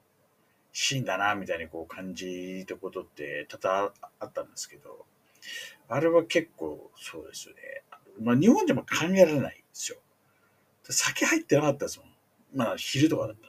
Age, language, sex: 50-69, Japanese, male